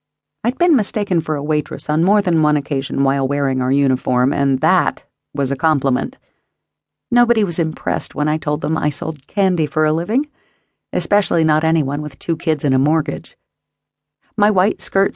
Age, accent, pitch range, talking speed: 50-69, American, 145-195 Hz, 180 wpm